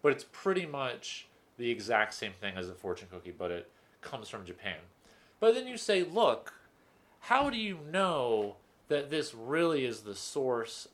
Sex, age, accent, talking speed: male, 30-49, American, 175 wpm